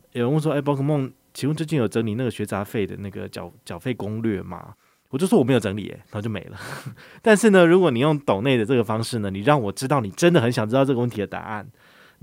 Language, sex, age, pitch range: Chinese, male, 20-39, 105-145 Hz